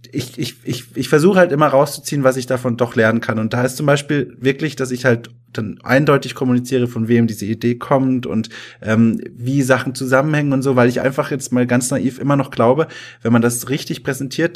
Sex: male